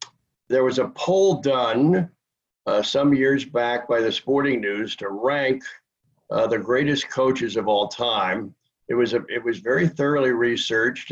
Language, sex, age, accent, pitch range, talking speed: English, male, 60-79, American, 110-130 Hz, 160 wpm